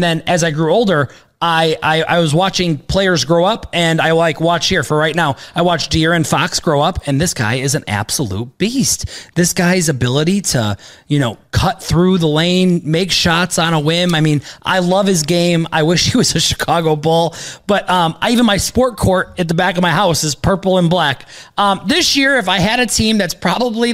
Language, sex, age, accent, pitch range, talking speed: English, male, 30-49, American, 155-200 Hz, 230 wpm